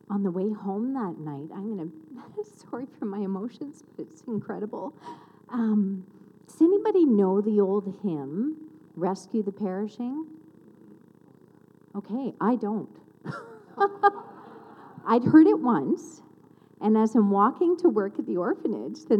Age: 40-59